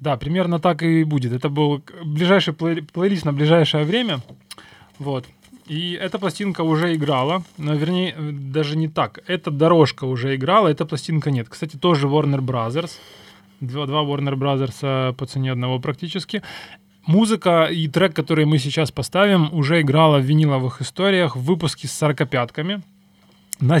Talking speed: 150 wpm